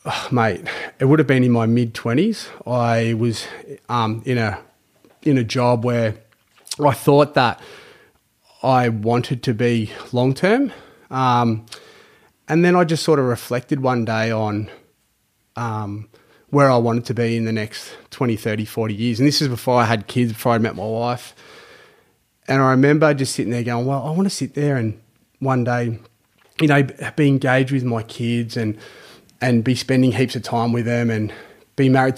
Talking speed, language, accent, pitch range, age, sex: 185 wpm, English, Australian, 115-135 Hz, 30-49, male